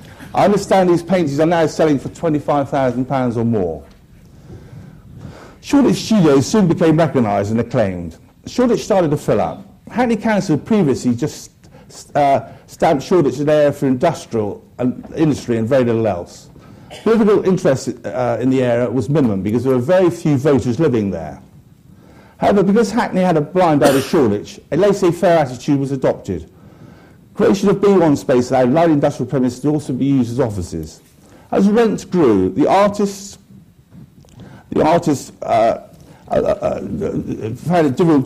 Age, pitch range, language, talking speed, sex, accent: 50-69, 125-180 Hz, English, 155 wpm, male, British